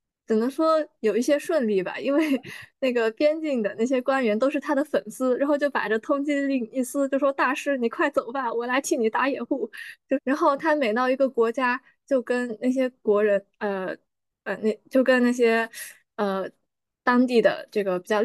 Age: 20-39